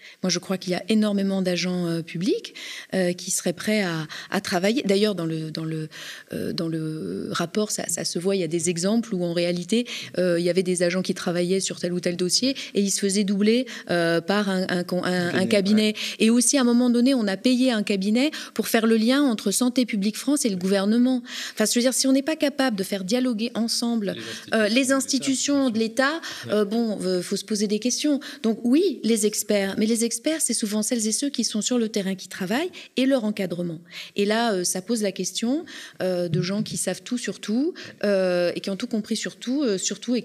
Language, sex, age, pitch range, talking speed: French, female, 30-49, 180-240 Hz, 240 wpm